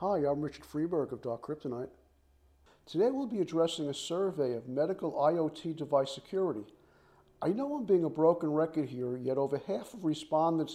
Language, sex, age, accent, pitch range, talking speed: English, male, 50-69, American, 135-170 Hz, 175 wpm